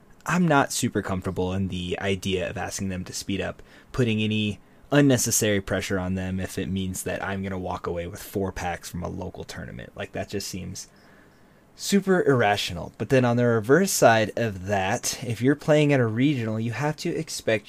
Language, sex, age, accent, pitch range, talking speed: English, male, 20-39, American, 95-125 Hz, 200 wpm